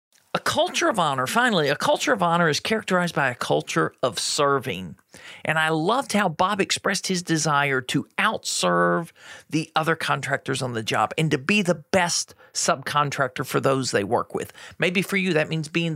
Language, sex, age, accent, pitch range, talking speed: English, male, 40-59, American, 150-200 Hz, 185 wpm